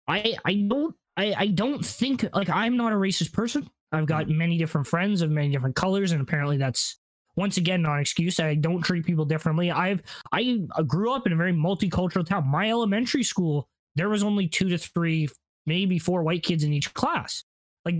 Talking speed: 205 wpm